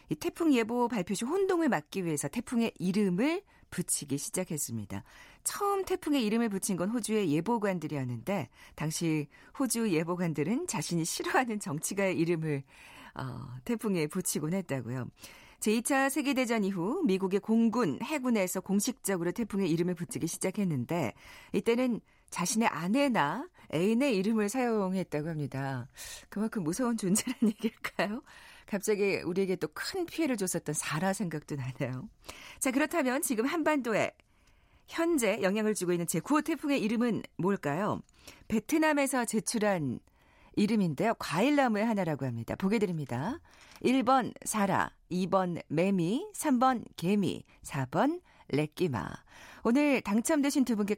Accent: native